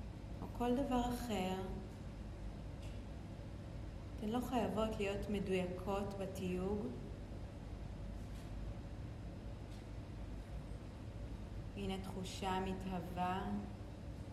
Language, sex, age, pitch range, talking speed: Hebrew, female, 30-49, 95-155 Hz, 50 wpm